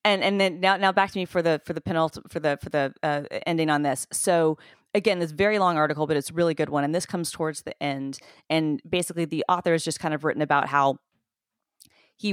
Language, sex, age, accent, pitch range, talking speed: English, female, 30-49, American, 145-170 Hz, 250 wpm